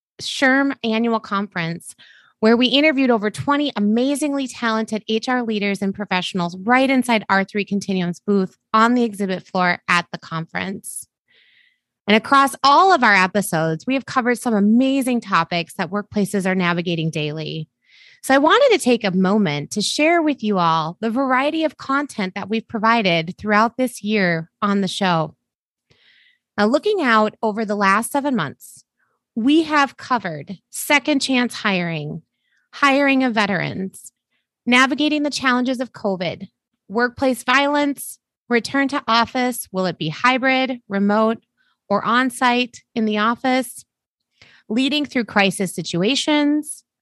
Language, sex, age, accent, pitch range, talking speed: English, female, 20-39, American, 200-270 Hz, 140 wpm